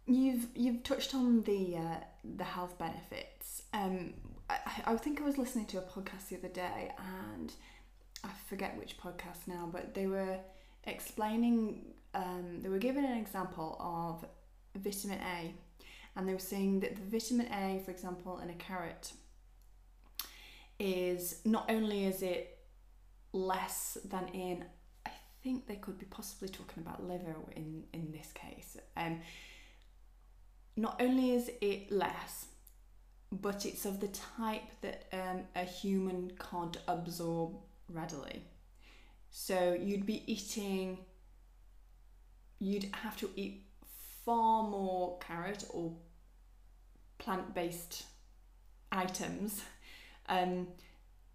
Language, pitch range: English, 165-205 Hz